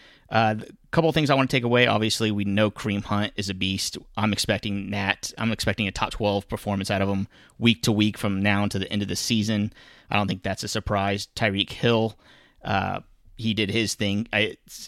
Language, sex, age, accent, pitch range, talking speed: English, male, 30-49, American, 100-115 Hz, 220 wpm